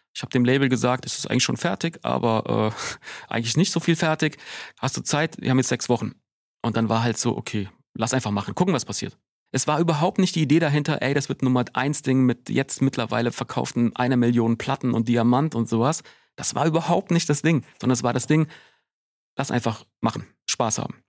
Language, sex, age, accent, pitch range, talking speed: German, male, 40-59, German, 115-135 Hz, 220 wpm